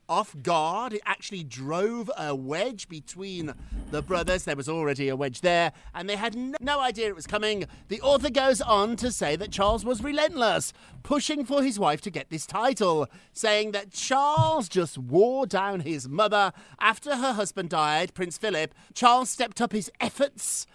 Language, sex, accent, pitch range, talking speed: English, male, British, 165-235 Hz, 180 wpm